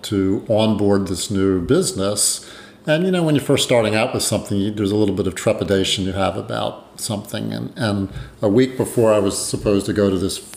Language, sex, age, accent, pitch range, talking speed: English, male, 50-69, American, 100-130 Hz, 215 wpm